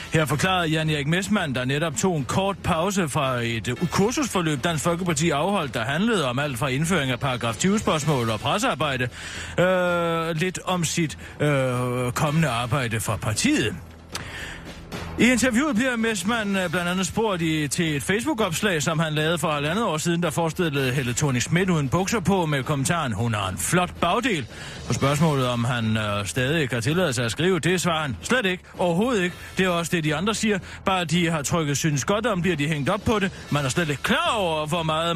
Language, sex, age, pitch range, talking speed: Danish, male, 30-49, 130-180 Hz, 195 wpm